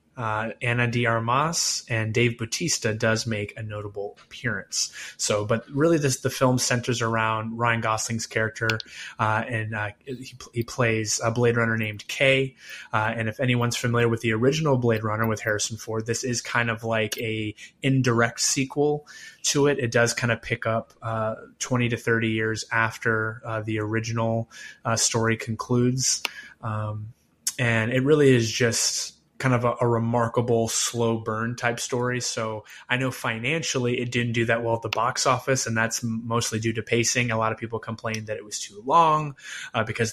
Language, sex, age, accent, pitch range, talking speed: English, male, 20-39, American, 110-120 Hz, 180 wpm